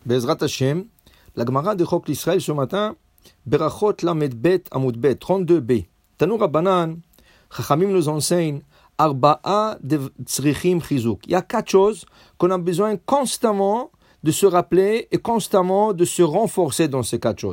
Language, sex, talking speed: English, male, 80 wpm